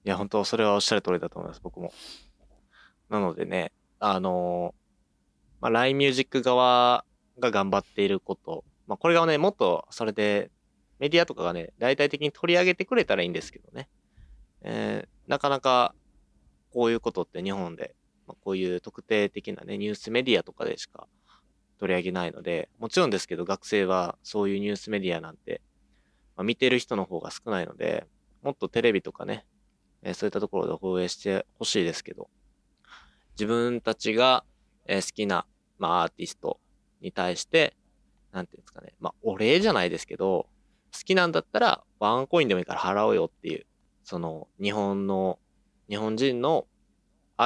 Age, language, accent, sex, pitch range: 20-39, Japanese, native, male, 90-120 Hz